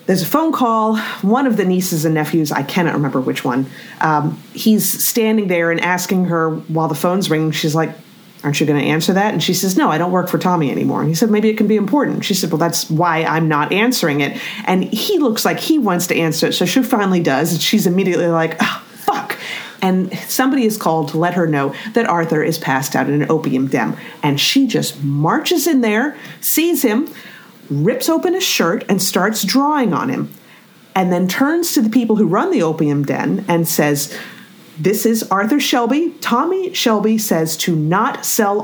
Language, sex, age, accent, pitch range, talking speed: English, female, 40-59, American, 165-225 Hz, 215 wpm